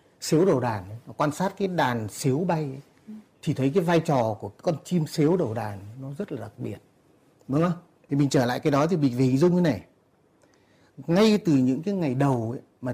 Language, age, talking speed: Vietnamese, 30-49, 215 wpm